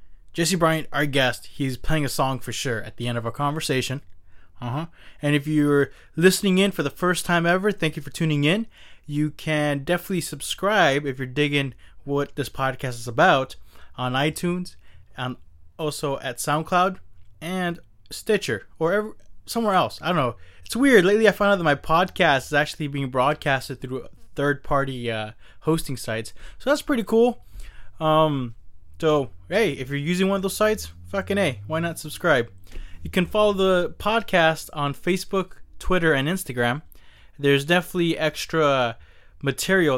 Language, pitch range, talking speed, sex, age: English, 130-175 Hz, 165 wpm, male, 20-39